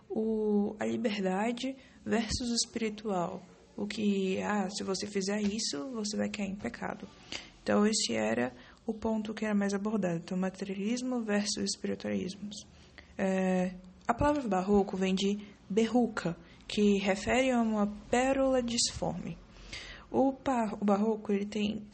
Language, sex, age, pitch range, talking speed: English, female, 20-39, 195-240 Hz, 135 wpm